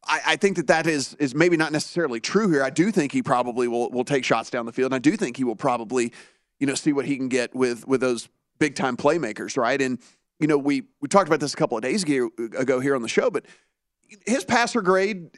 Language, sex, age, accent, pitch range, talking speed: English, male, 30-49, American, 130-160 Hz, 260 wpm